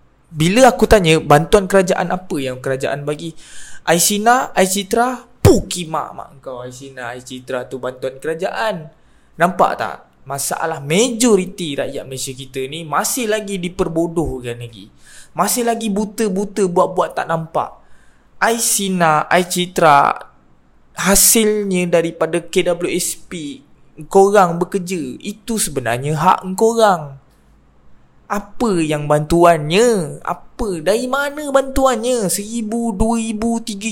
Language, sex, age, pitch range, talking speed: Malay, male, 20-39, 145-220 Hz, 105 wpm